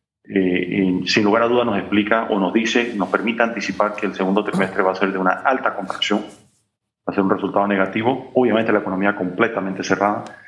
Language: Spanish